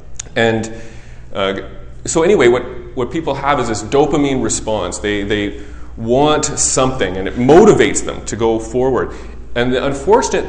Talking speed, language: 150 wpm, English